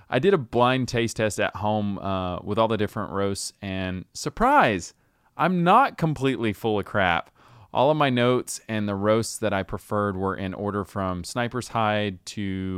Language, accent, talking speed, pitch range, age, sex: English, American, 185 wpm, 100-135 Hz, 20-39, male